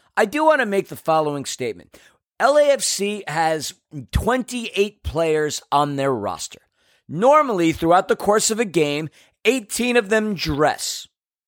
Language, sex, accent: English, male, American